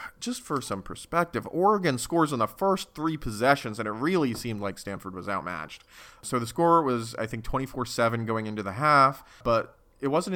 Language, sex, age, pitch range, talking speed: English, male, 30-49, 100-130 Hz, 190 wpm